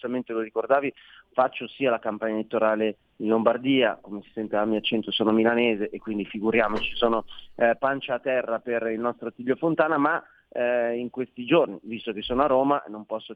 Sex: male